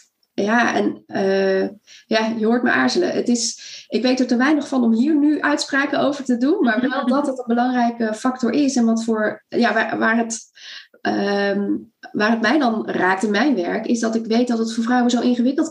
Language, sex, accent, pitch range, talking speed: Dutch, female, Dutch, 195-245 Hz, 220 wpm